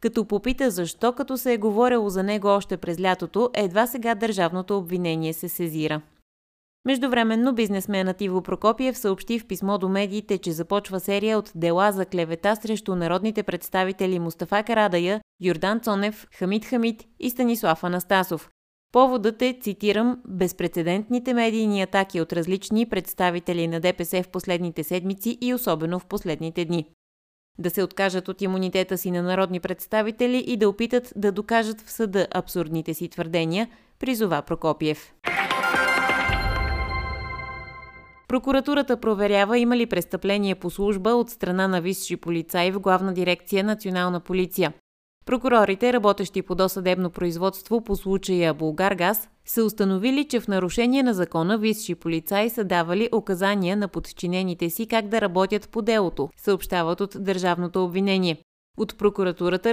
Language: Bulgarian